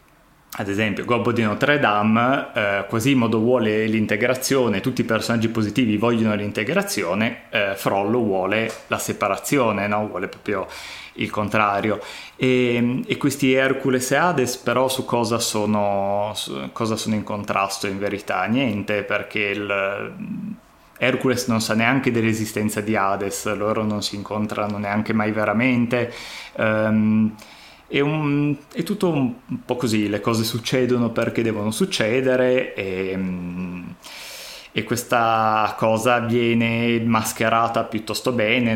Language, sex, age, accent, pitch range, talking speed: Italian, male, 20-39, native, 105-120 Hz, 125 wpm